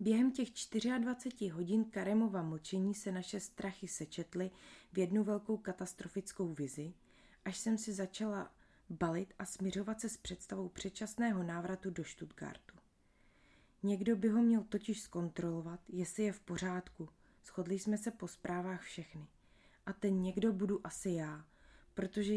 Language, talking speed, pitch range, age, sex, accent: Czech, 140 wpm, 175-210 Hz, 20-39, female, native